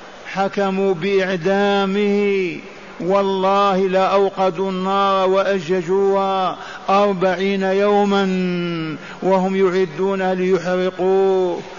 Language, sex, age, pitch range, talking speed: Arabic, male, 50-69, 175-195 Hz, 55 wpm